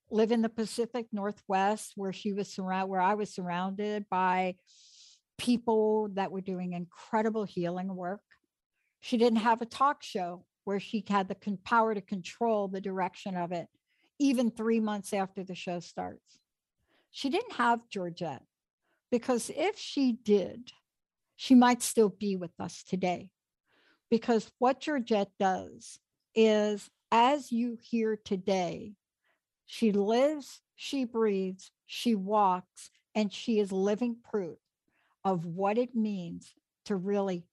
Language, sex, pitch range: English, female, 190-230 Hz